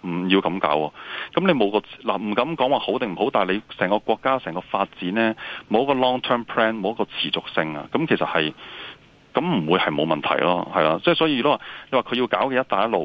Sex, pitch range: male, 80-105 Hz